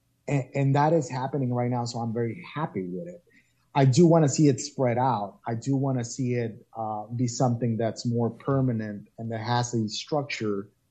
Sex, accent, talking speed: male, American, 205 wpm